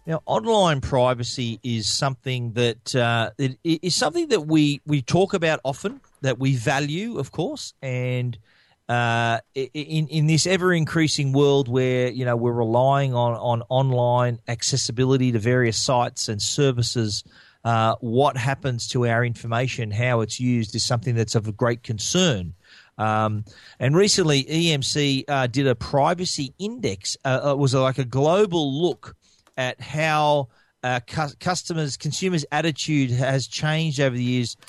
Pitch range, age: 125-155 Hz, 40-59